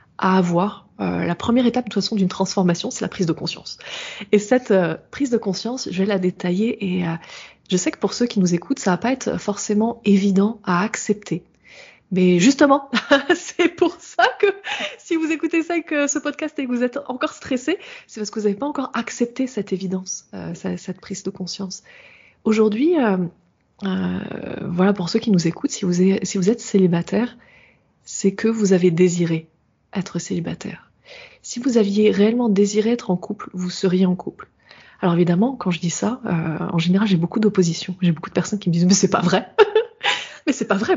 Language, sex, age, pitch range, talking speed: French, female, 20-39, 185-245 Hz, 210 wpm